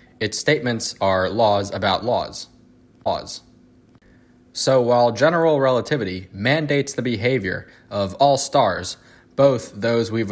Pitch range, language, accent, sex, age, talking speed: 100-130 Hz, English, American, male, 20-39, 115 wpm